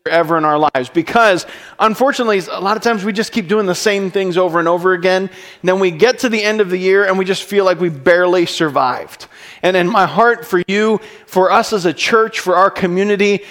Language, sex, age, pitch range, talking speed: English, male, 40-59, 155-200 Hz, 230 wpm